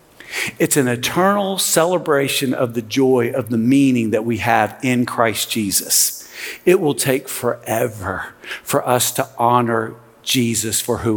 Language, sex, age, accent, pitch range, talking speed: English, male, 50-69, American, 120-165 Hz, 145 wpm